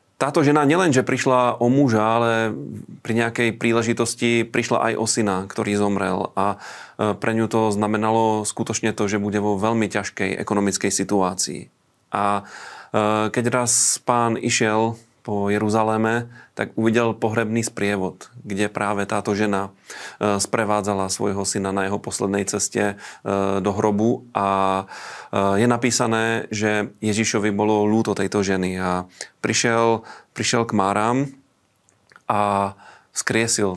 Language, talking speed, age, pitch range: Slovak, 125 wpm, 30-49, 100-115 Hz